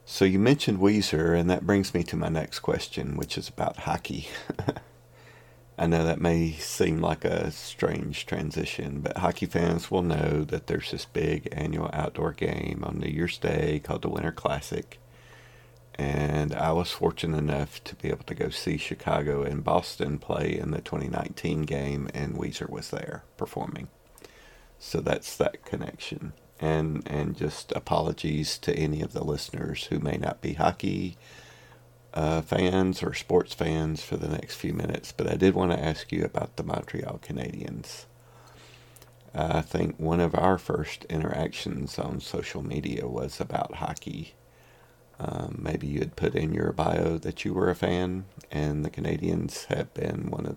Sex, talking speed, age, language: male, 165 wpm, 40-59, English